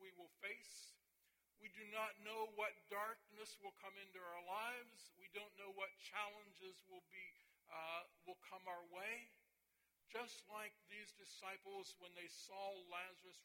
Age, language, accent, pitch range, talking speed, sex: 60-79, English, American, 170-210 Hz, 145 wpm, male